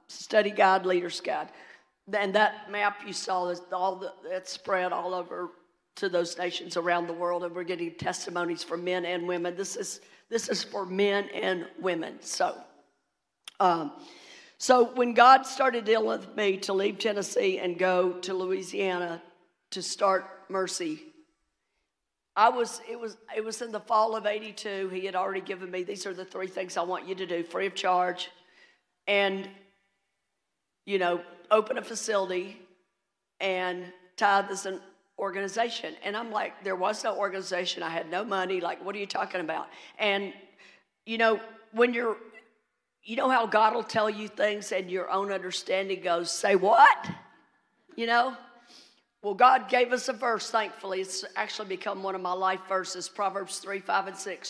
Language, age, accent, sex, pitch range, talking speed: English, 50-69, American, female, 185-220 Hz, 170 wpm